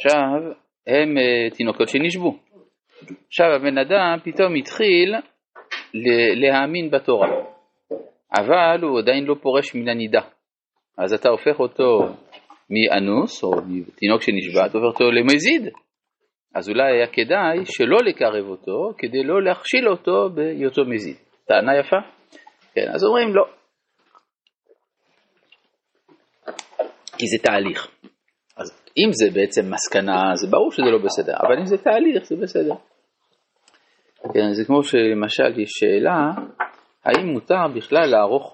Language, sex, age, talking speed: Hebrew, male, 40-59, 120 wpm